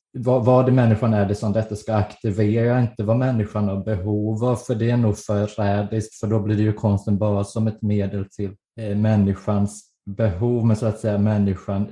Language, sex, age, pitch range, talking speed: Swedish, male, 20-39, 100-110 Hz, 190 wpm